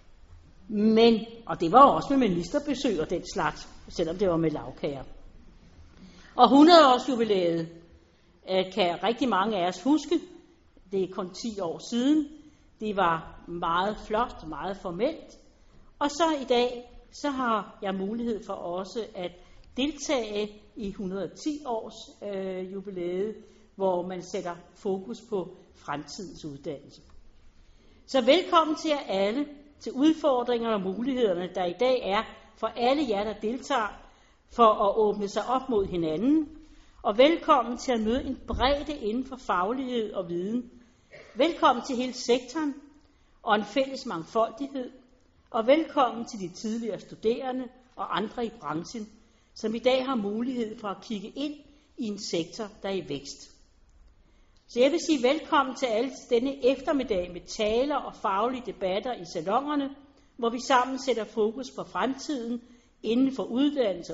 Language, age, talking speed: Danish, 60-79, 145 wpm